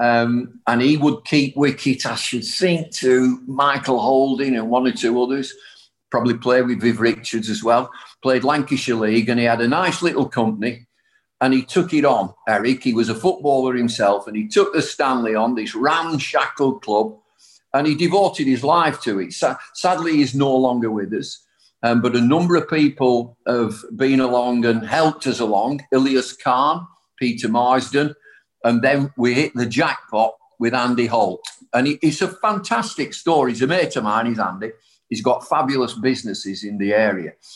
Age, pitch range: 50-69, 120-150 Hz